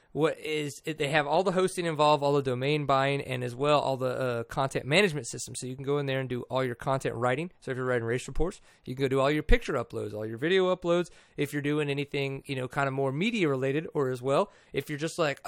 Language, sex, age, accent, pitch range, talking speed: English, male, 30-49, American, 130-165 Hz, 270 wpm